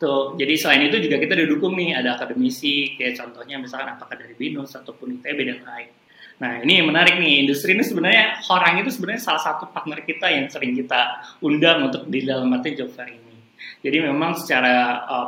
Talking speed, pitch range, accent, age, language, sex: 195 wpm, 125-165 Hz, Indonesian, 20-39, English, male